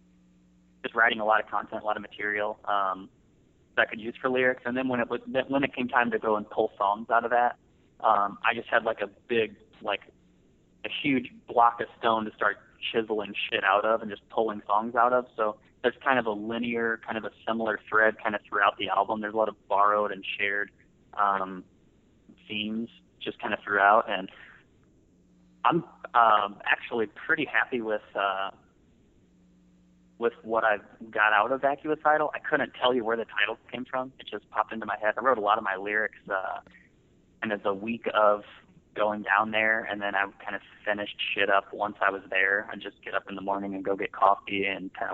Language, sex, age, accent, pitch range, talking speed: English, male, 30-49, American, 100-115 Hz, 215 wpm